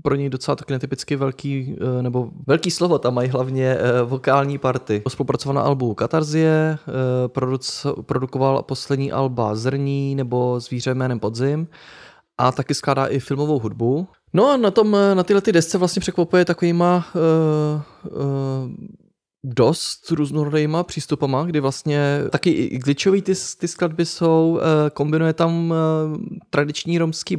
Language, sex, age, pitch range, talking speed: Czech, male, 20-39, 130-165 Hz, 135 wpm